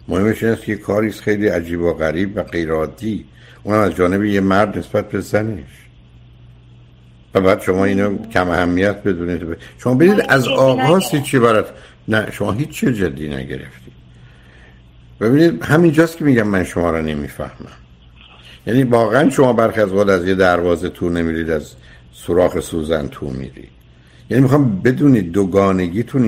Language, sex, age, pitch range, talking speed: Persian, male, 60-79, 85-130 Hz, 150 wpm